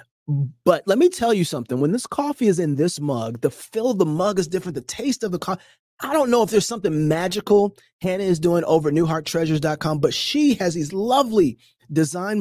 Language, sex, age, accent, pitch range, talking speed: English, male, 30-49, American, 155-235 Hz, 215 wpm